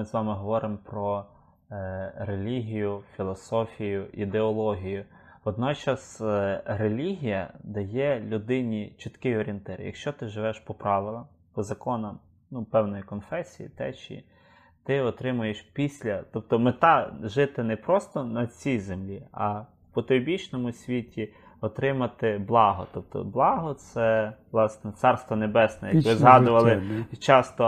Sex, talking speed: male, 125 wpm